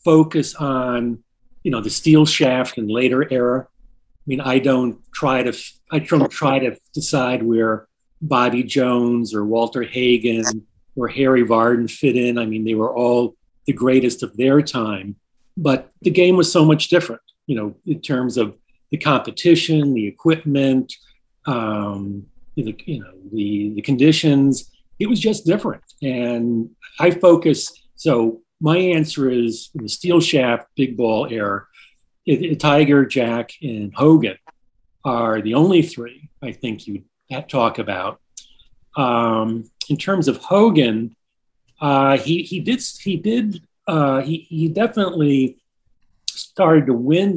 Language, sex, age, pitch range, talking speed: German, male, 40-59, 115-150 Hz, 145 wpm